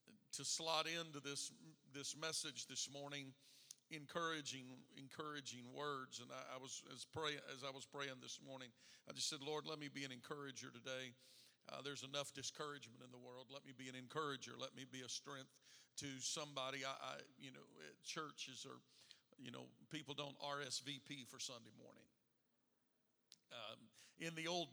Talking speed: 170 wpm